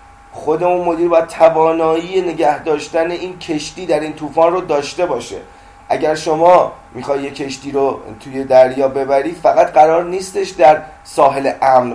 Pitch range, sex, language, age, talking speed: 135-190 Hz, male, Persian, 30-49, 140 wpm